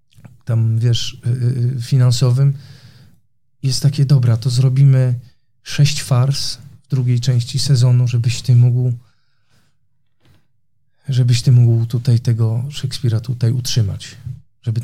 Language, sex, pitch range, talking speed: Polish, male, 120-135 Hz, 100 wpm